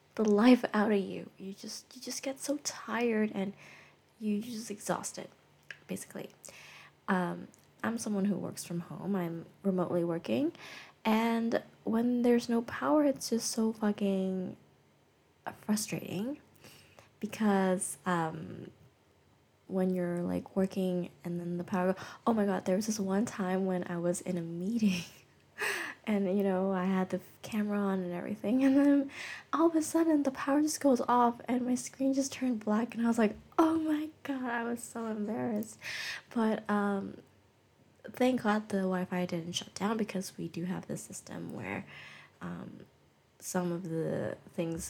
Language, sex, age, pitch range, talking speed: English, female, 20-39, 185-240 Hz, 160 wpm